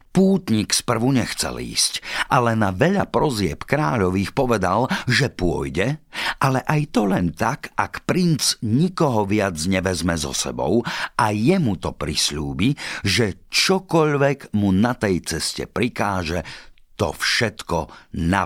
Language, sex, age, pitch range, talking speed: Slovak, male, 50-69, 80-115 Hz, 125 wpm